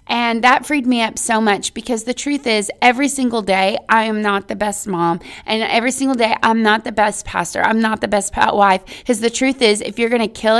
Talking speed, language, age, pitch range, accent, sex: 250 wpm, English, 20-39, 195-230 Hz, American, female